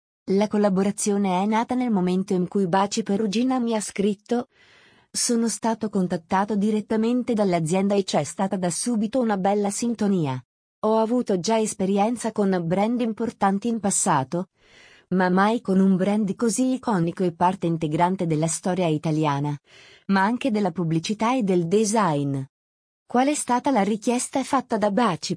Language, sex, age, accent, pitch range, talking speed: Italian, female, 30-49, native, 175-225 Hz, 150 wpm